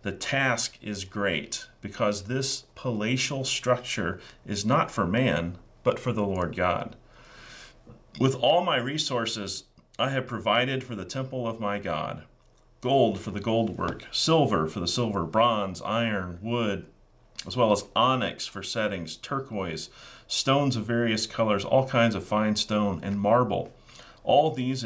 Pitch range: 95-120 Hz